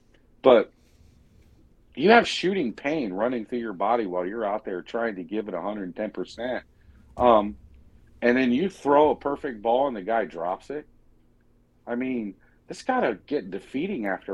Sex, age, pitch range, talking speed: male, 50-69, 95-130 Hz, 165 wpm